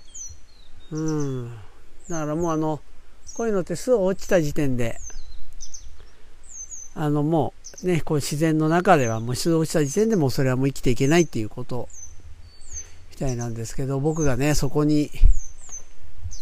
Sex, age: male, 50-69